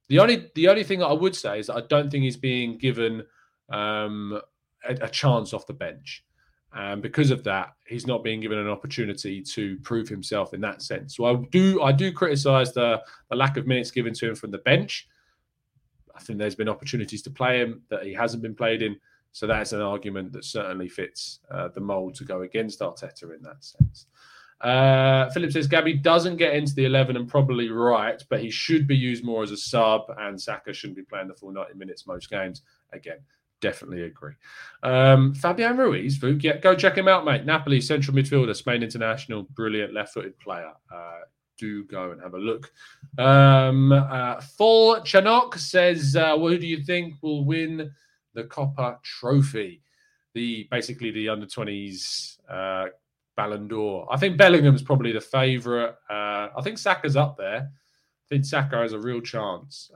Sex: male